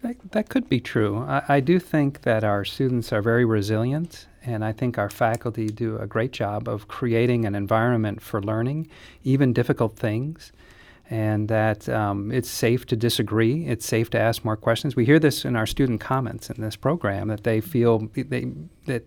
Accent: American